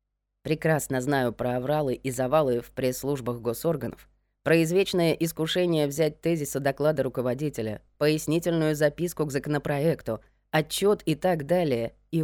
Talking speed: 120 wpm